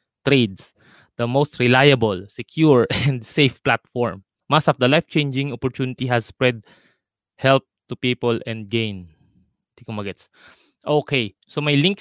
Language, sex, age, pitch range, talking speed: Filipino, male, 20-39, 115-135 Hz, 120 wpm